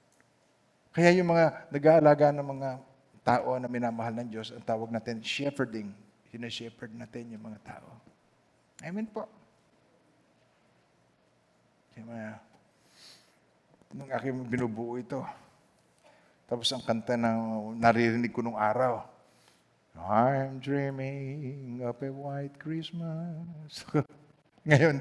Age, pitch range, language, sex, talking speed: 50-69, 115-160 Hz, Filipino, male, 105 wpm